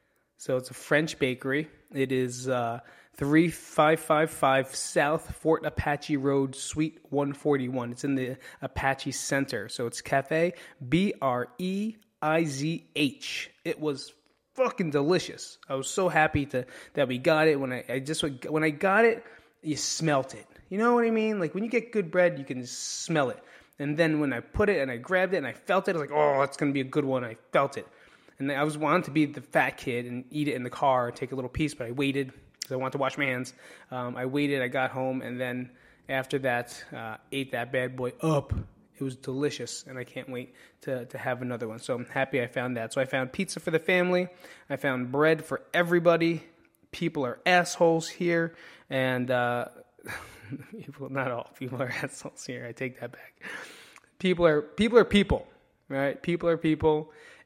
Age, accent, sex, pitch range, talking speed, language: 20-39, American, male, 130-160 Hz, 200 wpm, English